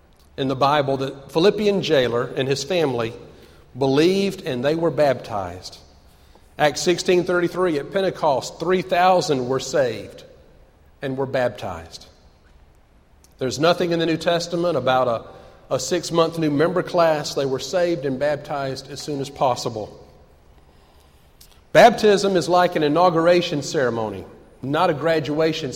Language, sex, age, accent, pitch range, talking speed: English, male, 40-59, American, 125-170 Hz, 130 wpm